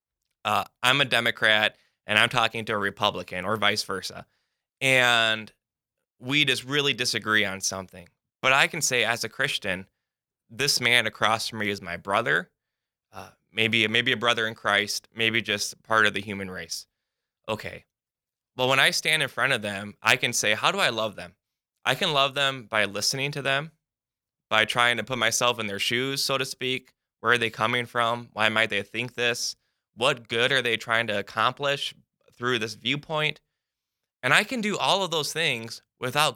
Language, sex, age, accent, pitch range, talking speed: English, male, 10-29, American, 110-140 Hz, 190 wpm